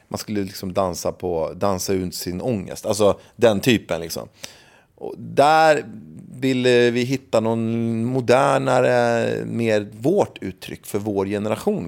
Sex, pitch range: male, 95-120 Hz